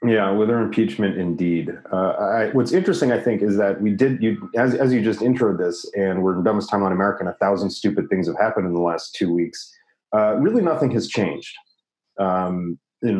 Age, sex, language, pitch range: 30-49, male, English, 90-105 Hz